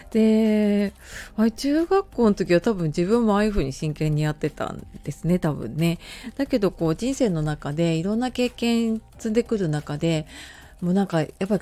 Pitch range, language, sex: 155-215 Hz, Japanese, female